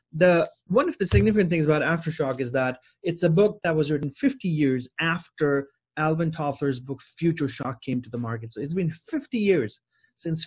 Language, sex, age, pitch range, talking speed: English, male, 30-49, 145-205 Hz, 195 wpm